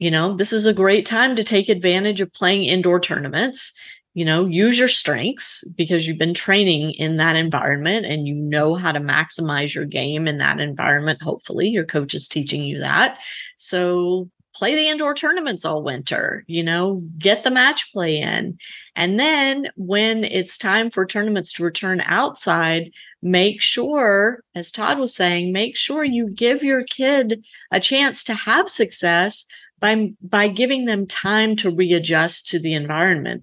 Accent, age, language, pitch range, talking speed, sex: American, 30-49, English, 165-210 Hz, 170 wpm, female